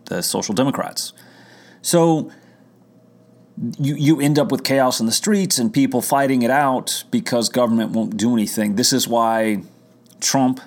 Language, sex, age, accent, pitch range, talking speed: English, male, 30-49, American, 110-140 Hz, 150 wpm